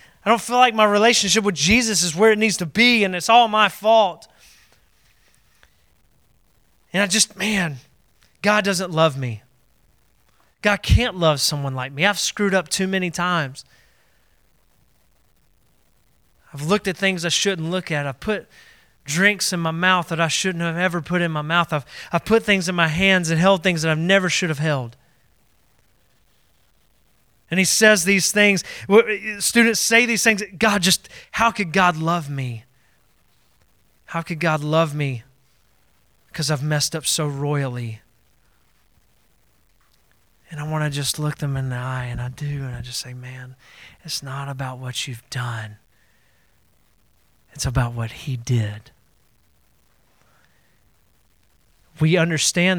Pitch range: 140-190 Hz